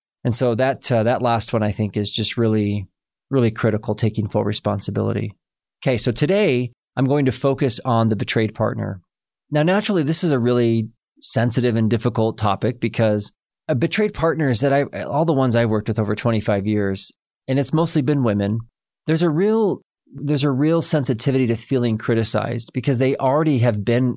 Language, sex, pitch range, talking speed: English, male, 110-135 Hz, 185 wpm